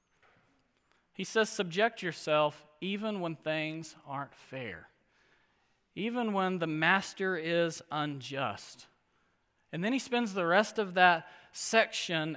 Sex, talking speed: male, 115 wpm